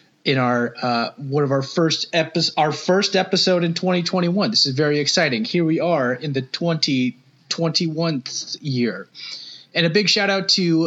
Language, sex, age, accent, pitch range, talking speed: English, male, 30-49, American, 135-170 Hz, 165 wpm